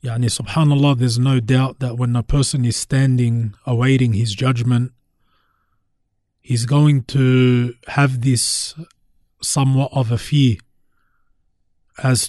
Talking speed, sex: 110 wpm, male